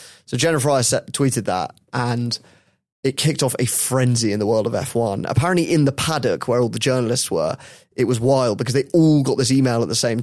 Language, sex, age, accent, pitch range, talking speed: English, male, 30-49, British, 115-135 Hz, 215 wpm